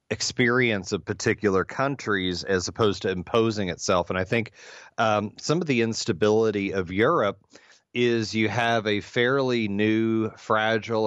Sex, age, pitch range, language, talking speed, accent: male, 40-59, 95-110 Hz, English, 140 wpm, American